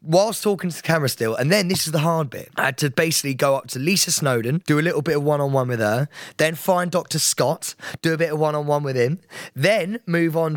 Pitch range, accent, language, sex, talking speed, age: 140-190 Hz, British, English, male, 250 wpm, 20-39